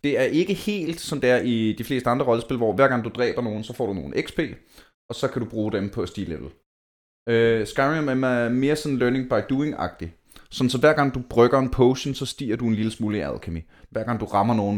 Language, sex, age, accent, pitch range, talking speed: Danish, male, 20-39, native, 105-155 Hz, 240 wpm